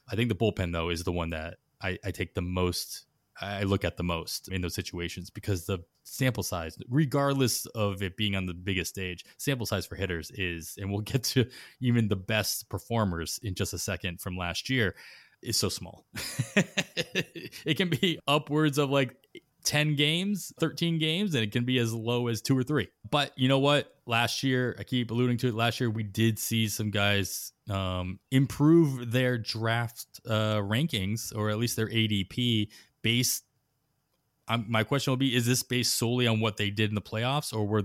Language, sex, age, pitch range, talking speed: English, male, 20-39, 100-125 Hz, 200 wpm